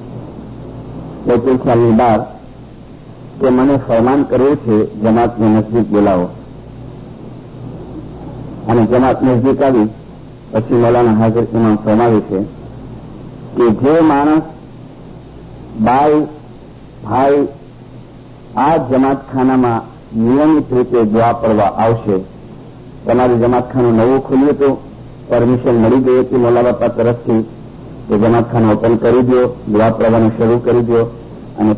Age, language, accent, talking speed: 50-69, English, Indian, 85 wpm